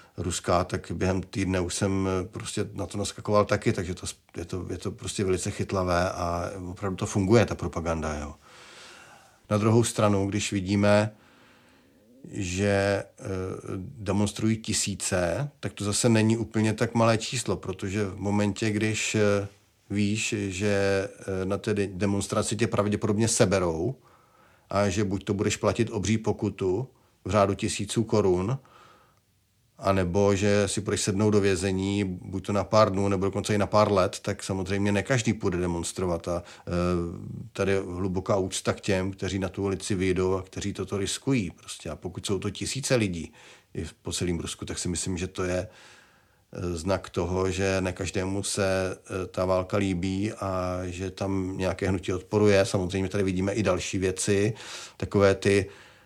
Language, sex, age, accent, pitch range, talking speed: Czech, male, 40-59, native, 95-105 Hz, 150 wpm